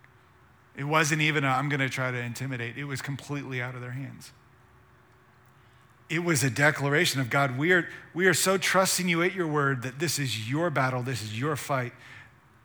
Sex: male